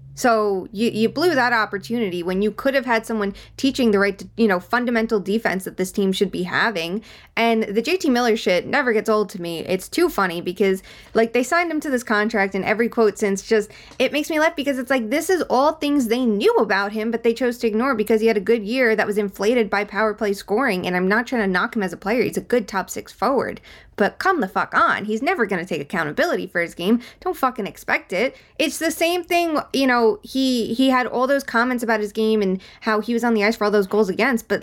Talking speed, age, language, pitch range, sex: 255 wpm, 20-39, English, 200-250 Hz, female